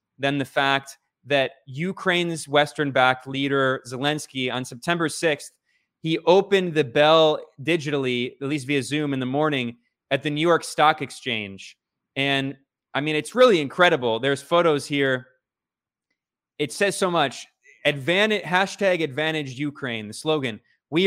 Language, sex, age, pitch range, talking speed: English, male, 20-39, 135-165 Hz, 135 wpm